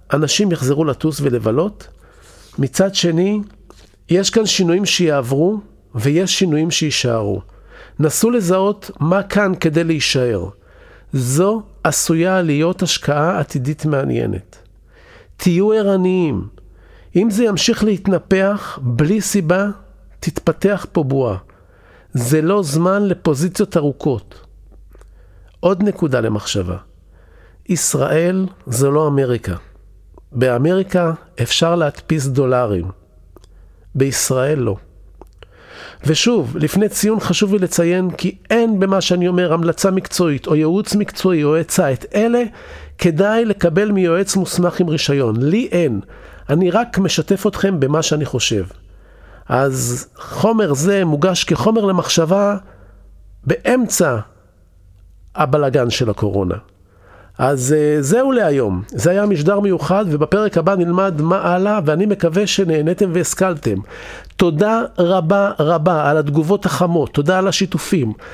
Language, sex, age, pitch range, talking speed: Hebrew, male, 50-69, 125-190 Hz, 110 wpm